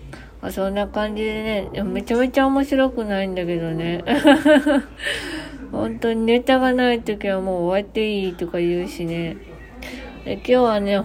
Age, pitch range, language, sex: 20-39, 175-225 Hz, Japanese, female